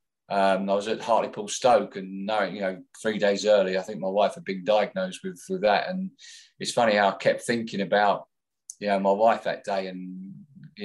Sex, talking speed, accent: male, 210 wpm, British